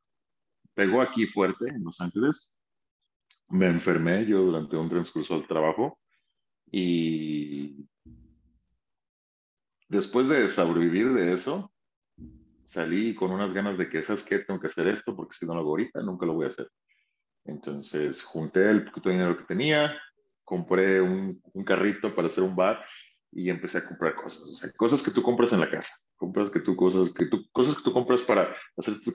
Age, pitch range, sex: 40-59, 85-100 Hz, male